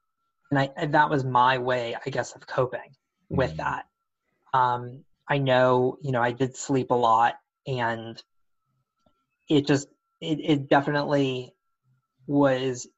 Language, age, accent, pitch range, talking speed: English, 20-39, American, 125-145 Hz, 140 wpm